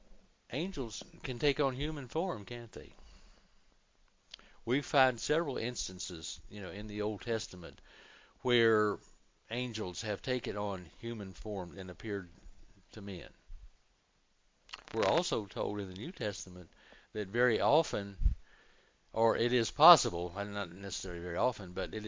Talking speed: 135 wpm